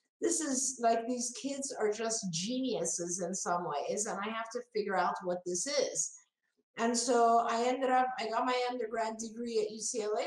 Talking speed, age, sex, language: 185 wpm, 50-69, female, English